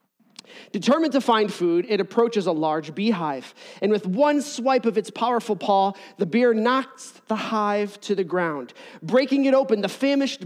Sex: male